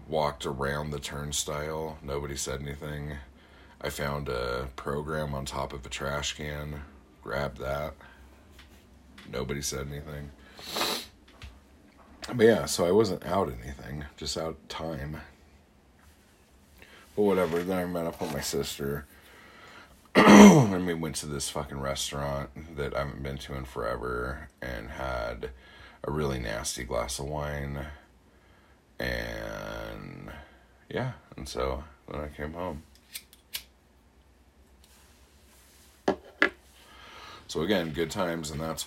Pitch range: 70-80 Hz